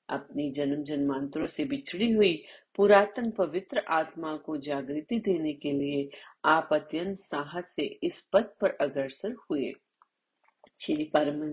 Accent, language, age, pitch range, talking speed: native, Hindi, 40-59, 145-190 Hz, 120 wpm